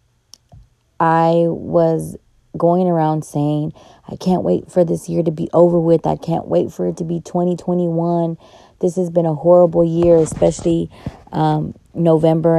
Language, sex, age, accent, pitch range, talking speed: English, female, 20-39, American, 155-175 Hz, 155 wpm